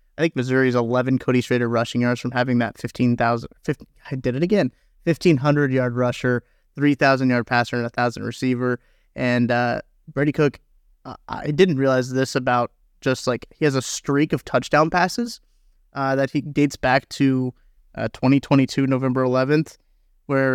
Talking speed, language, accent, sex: 175 wpm, English, American, male